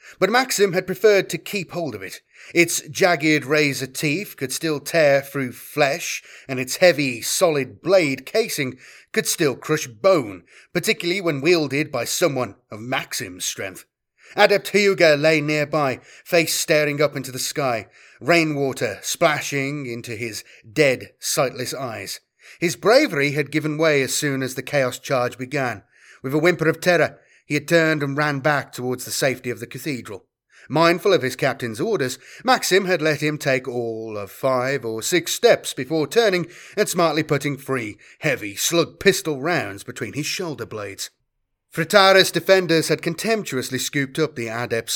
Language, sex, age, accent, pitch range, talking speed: English, male, 30-49, British, 130-170 Hz, 160 wpm